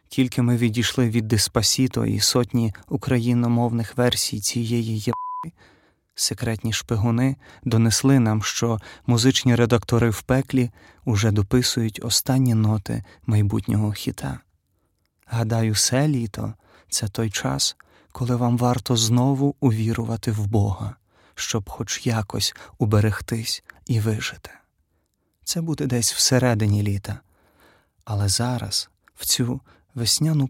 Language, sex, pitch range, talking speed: Ukrainian, male, 105-125 Hz, 110 wpm